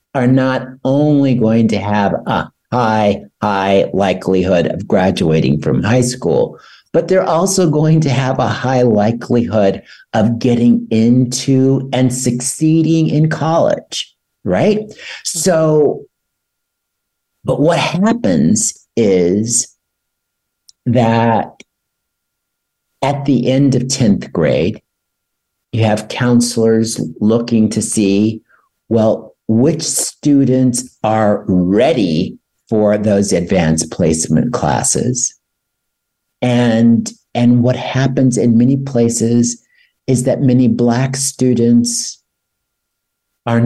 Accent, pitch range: American, 110-130 Hz